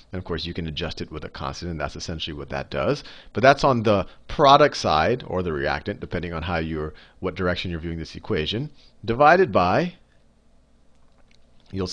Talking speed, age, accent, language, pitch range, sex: 190 wpm, 40-59, American, English, 90-145 Hz, male